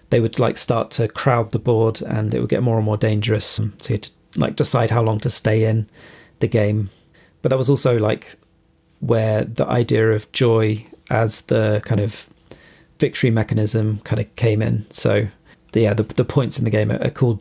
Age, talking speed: 30-49, 200 wpm